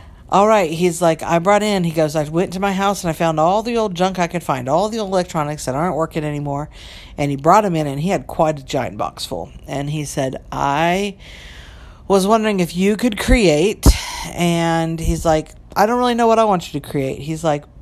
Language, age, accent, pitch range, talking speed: English, 50-69, American, 145-180 Hz, 235 wpm